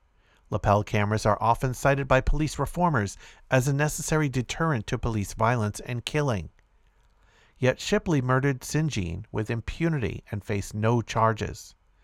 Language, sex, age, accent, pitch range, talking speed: English, male, 50-69, American, 105-135 Hz, 135 wpm